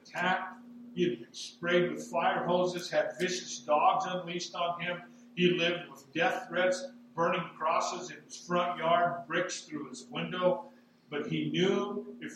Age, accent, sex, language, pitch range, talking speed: 50-69, American, male, English, 175-240 Hz, 160 wpm